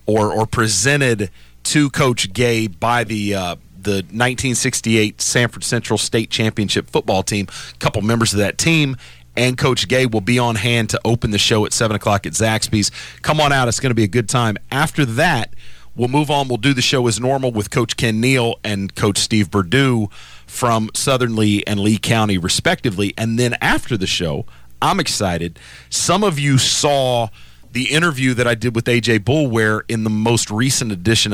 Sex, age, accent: male, 40-59, American